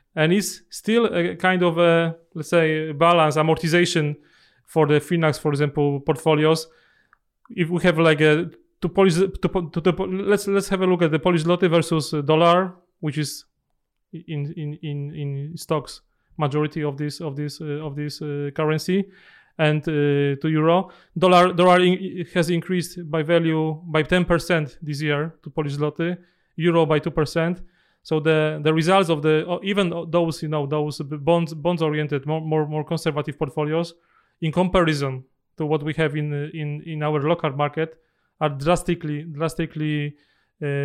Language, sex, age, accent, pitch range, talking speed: Croatian, male, 30-49, Polish, 150-175 Hz, 165 wpm